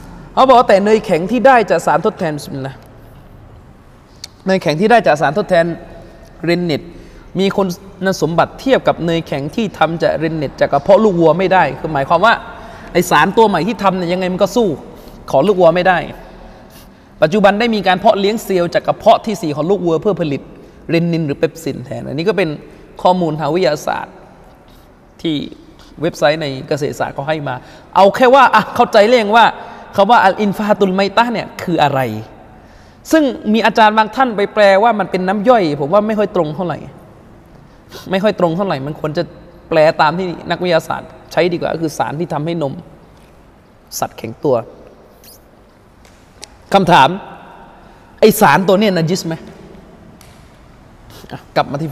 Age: 20-39